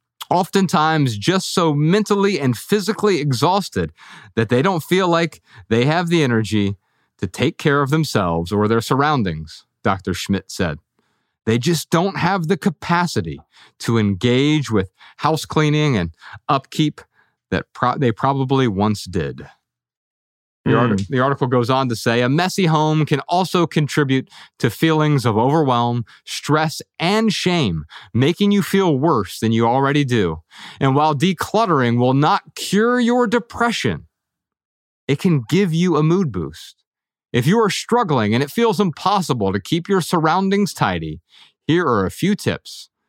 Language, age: English, 30-49